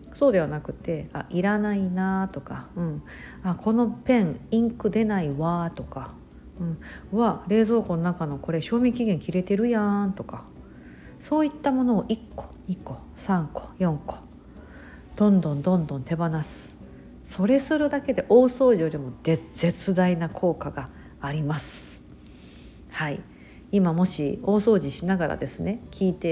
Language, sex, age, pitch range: Japanese, female, 50-69, 165-210 Hz